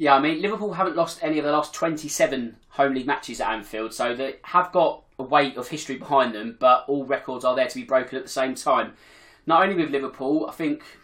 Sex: male